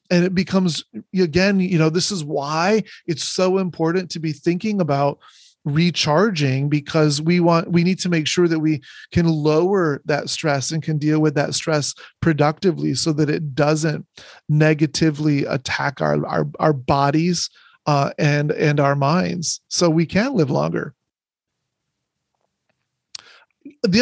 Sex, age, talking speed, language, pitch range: male, 30-49, 145 wpm, English, 150-185 Hz